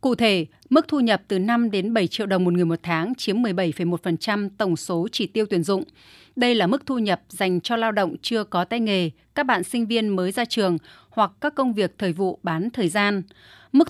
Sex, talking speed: female, 230 wpm